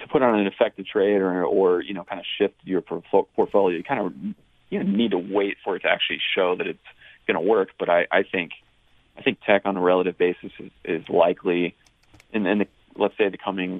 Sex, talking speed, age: male, 235 wpm, 30-49